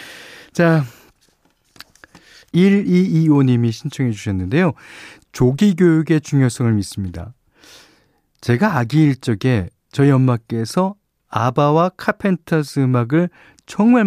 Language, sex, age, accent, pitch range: Korean, male, 40-59, native, 115-160 Hz